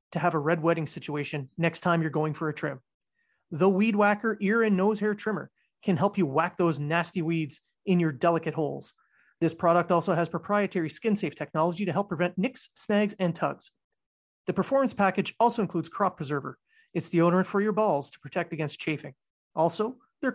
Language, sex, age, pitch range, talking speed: English, male, 30-49, 165-205 Hz, 195 wpm